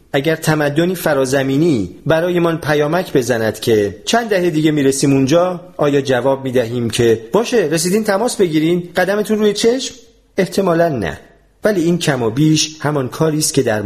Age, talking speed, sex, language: 40-59, 155 wpm, male, Persian